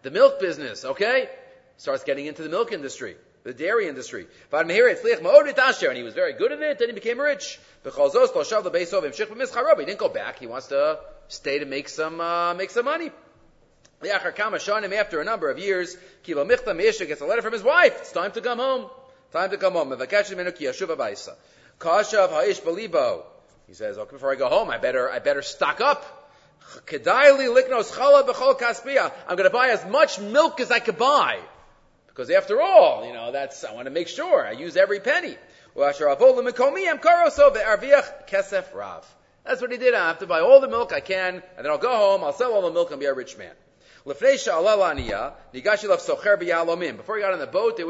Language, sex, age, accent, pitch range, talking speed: English, male, 30-49, Canadian, 195-310 Hz, 190 wpm